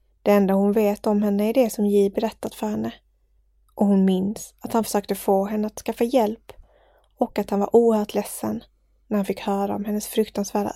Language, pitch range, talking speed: English, 205-225 Hz, 205 wpm